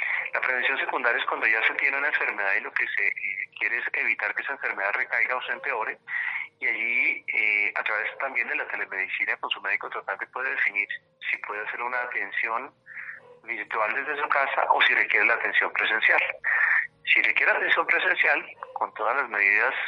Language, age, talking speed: Spanish, 40-59, 190 wpm